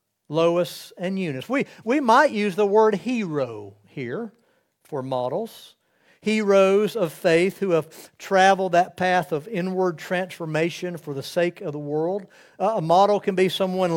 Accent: American